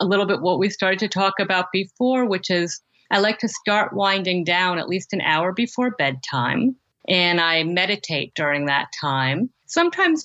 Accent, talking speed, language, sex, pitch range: American, 180 wpm, English, female, 160-210 Hz